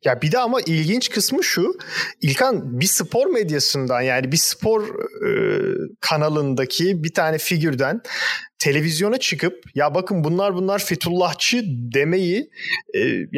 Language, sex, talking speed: Turkish, male, 125 wpm